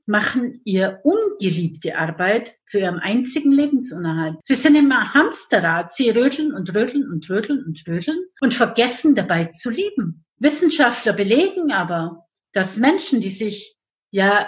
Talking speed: 140 wpm